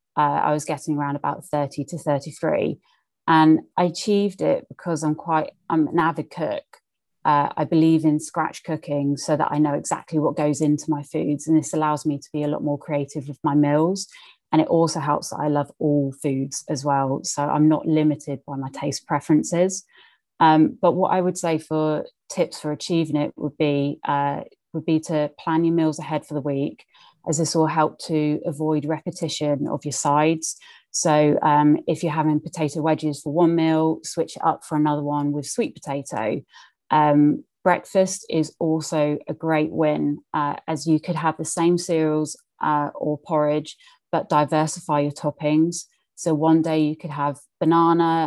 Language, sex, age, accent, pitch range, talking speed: English, female, 30-49, British, 150-160 Hz, 185 wpm